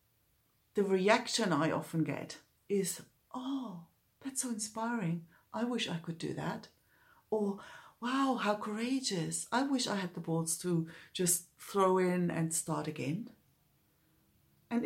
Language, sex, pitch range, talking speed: English, female, 155-190 Hz, 135 wpm